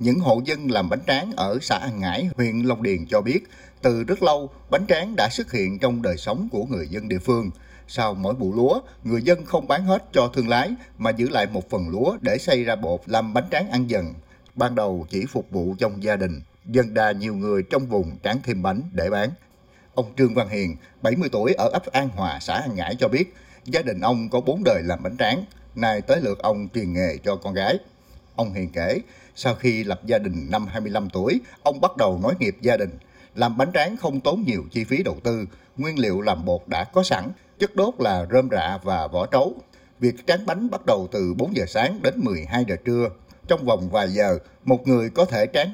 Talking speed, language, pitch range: 230 wpm, Vietnamese, 100-150 Hz